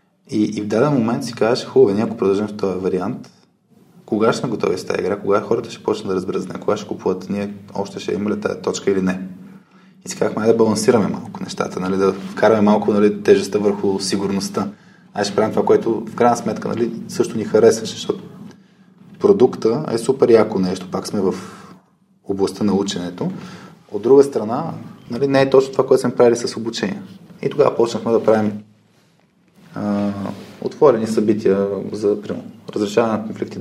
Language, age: Bulgarian, 20-39